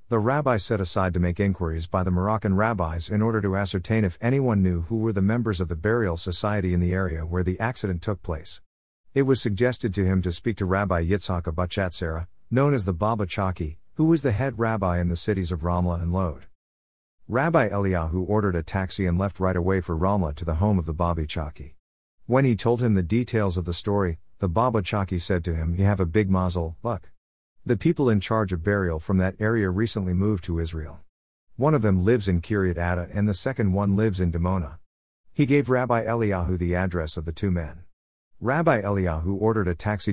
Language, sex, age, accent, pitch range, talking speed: English, male, 50-69, American, 90-110 Hz, 215 wpm